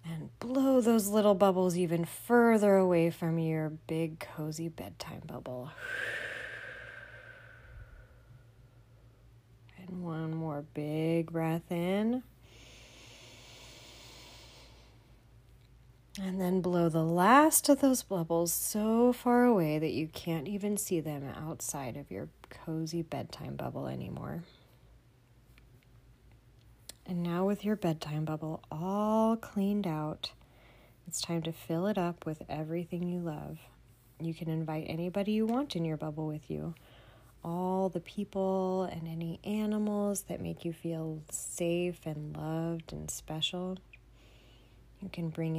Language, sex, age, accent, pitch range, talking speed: English, female, 30-49, American, 125-185 Hz, 120 wpm